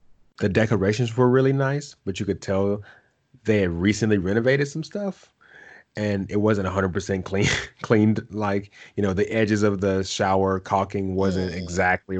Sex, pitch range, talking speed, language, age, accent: male, 90-110 Hz, 160 wpm, English, 30-49, American